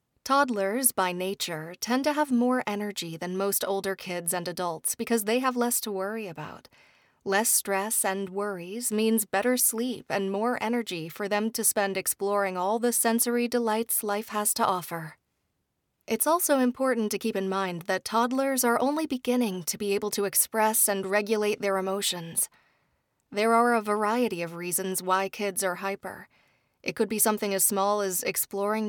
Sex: female